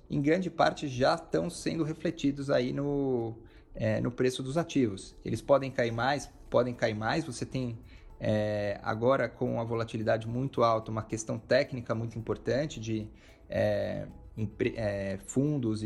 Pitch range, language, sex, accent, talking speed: 110-140 Hz, Portuguese, male, Brazilian, 130 wpm